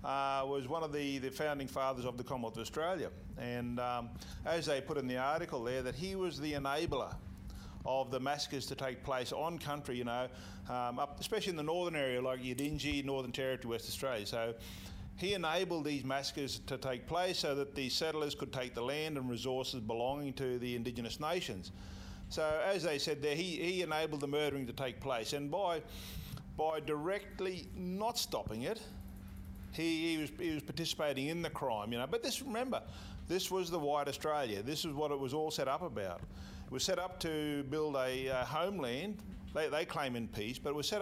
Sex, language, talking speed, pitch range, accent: male, English, 200 wpm, 125-165 Hz, Australian